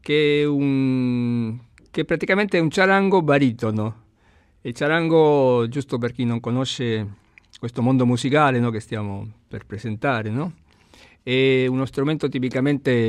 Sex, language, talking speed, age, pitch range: male, Italian, 135 wpm, 50-69, 110-135 Hz